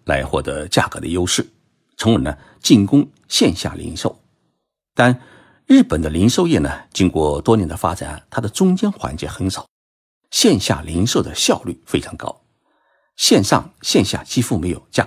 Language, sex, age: Chinese, male, 50-69